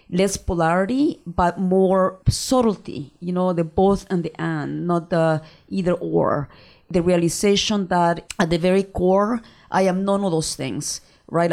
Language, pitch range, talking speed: English, 165-190 Hz, 155 wpm